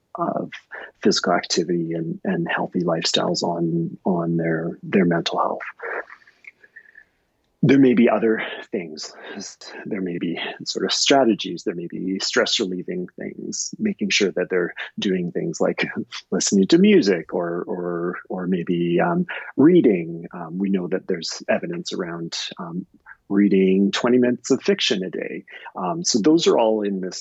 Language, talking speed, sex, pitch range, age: English, 150 wpm, male, 90-135 Hz, 30-49